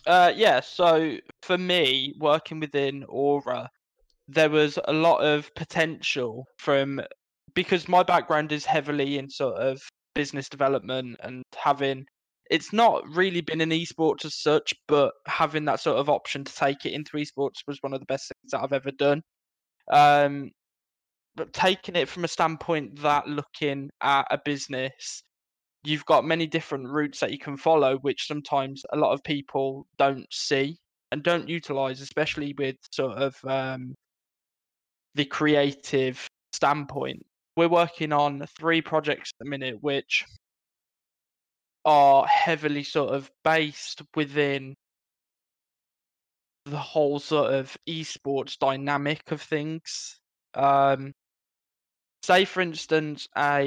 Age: 10-29